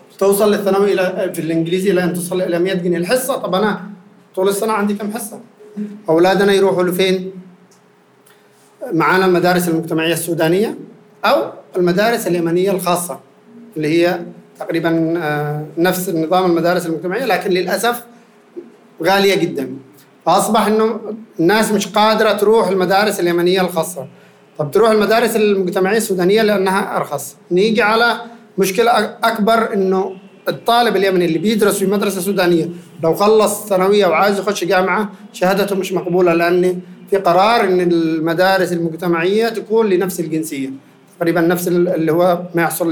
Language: Arabic